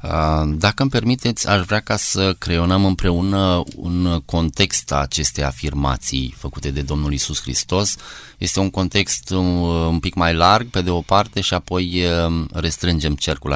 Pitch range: 80-100 Hz